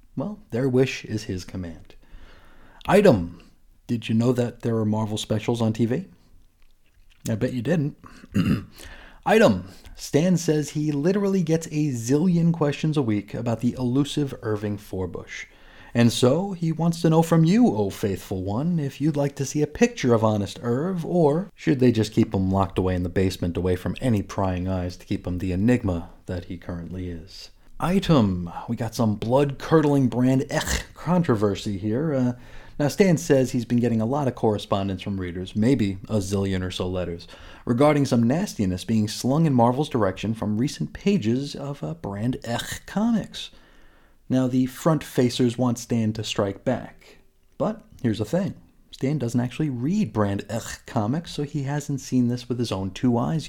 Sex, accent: male, American